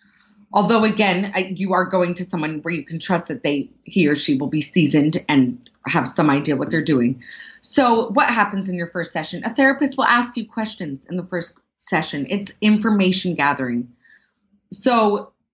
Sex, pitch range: female, 175-220 Hz